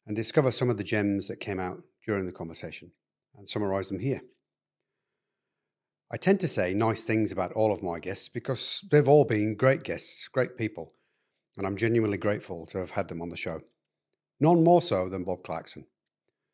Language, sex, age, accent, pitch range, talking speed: English, male, 40-59, British, 95-125 Hz, 190 wpm